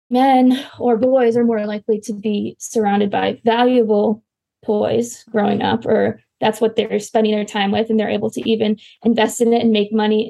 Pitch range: 215-235 Hz